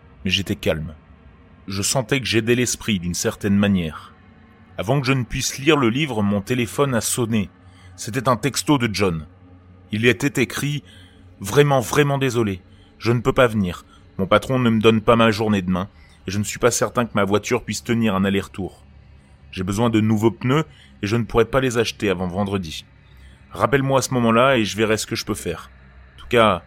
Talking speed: 205 wpm